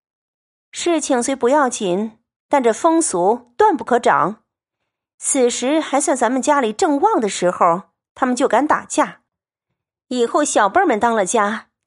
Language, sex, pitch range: Chinese, female, 225-315 Hz